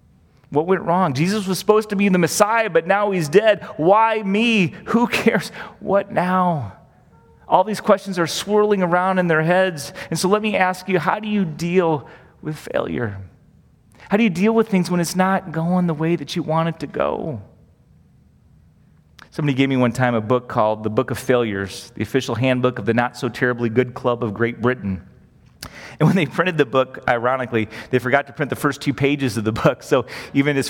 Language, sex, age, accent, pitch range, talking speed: English, male, 30-49, American, 135-205 Hz, 200 wpm